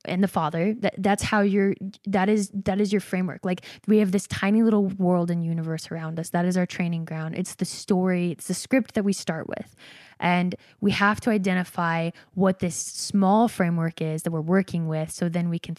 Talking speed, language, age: 215 wpm, English, 20-39